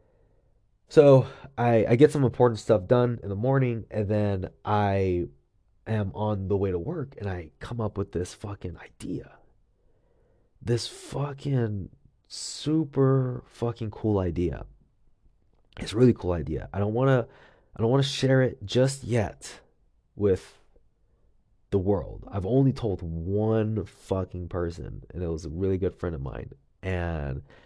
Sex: male